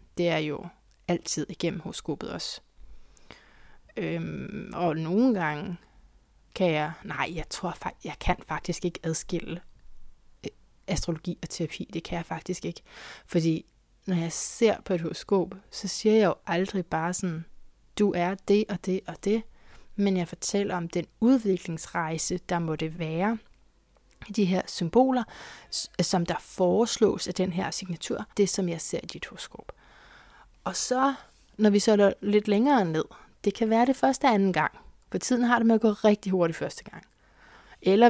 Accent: native